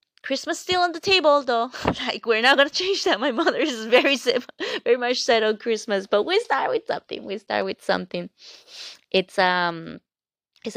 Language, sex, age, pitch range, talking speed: English, female, 20-39, 190-230 Hz, 190 wpm